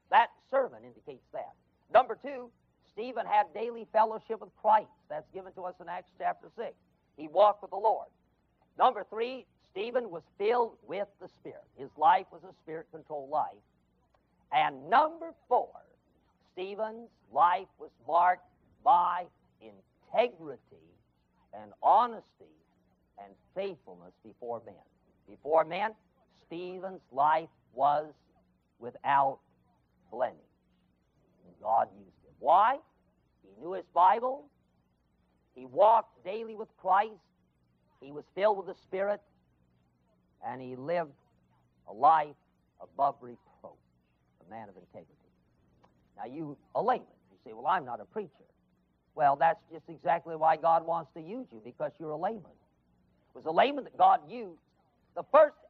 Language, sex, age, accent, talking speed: English, male, 50-69, American, 135 wpm